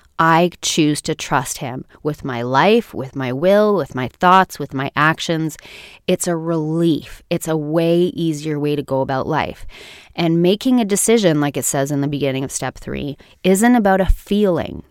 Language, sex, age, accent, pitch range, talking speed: English, female, 20-39, American, 145-180 Hz, 185 wpm